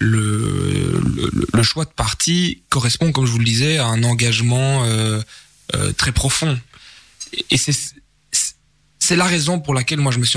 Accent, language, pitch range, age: French, French, 120-145 Hz, 20-39